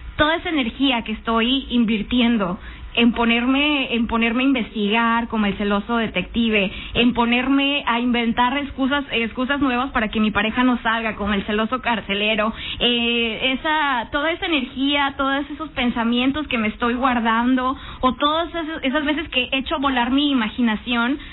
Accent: Mexican